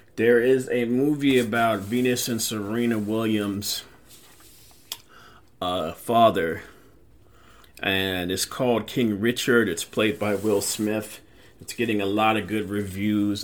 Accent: American